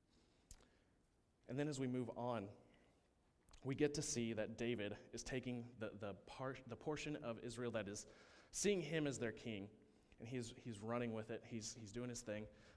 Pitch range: 105-135 Hz